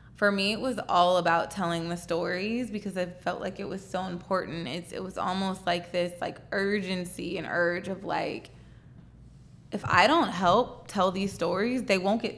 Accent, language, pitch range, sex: American, English, 170-190 Hz, female